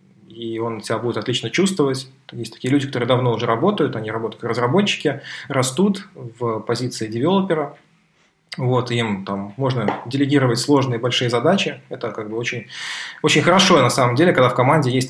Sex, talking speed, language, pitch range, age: male, 165 wpm, Russian, 120-160 Hz, 20-39